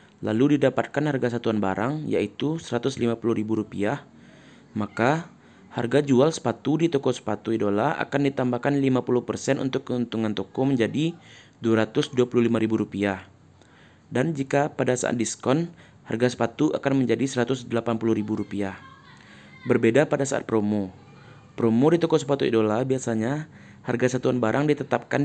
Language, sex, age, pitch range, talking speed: Indonesian, male, 20-39, 115-140 Hz, 125 wpm